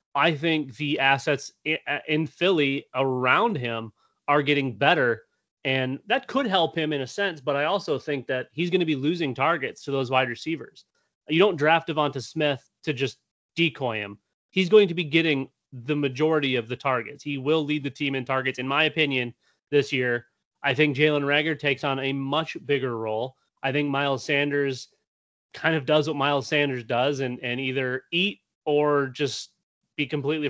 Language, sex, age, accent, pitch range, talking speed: English, male, 30-49, American, 130-160 Hz, 185 wpm